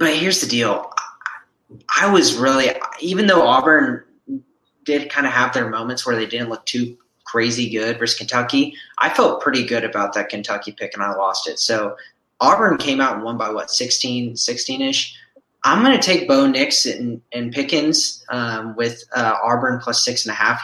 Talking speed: 185 wpm